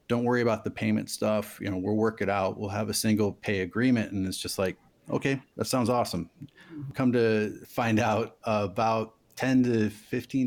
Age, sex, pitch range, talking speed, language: 30-49, male, 95-110 Hz, 195 wpm, English